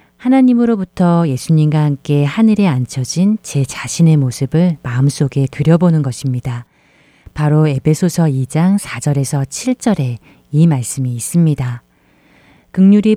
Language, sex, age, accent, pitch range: Korean, female, 40-59, native, 140-185 Hz